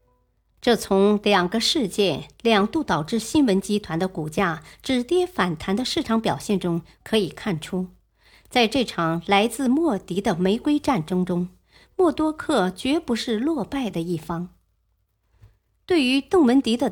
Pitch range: 175-265 Hz